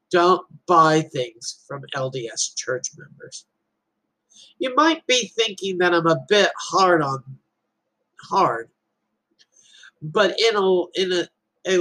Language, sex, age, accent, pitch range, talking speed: English, male, 50-69, American, 145-180 Hz, 120 wpm